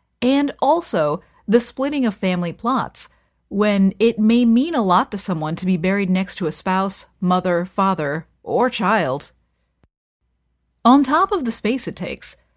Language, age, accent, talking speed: English, 30-49, American, 160 wpm